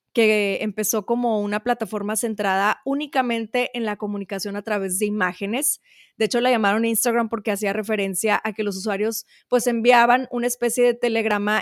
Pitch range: 210-250 Hz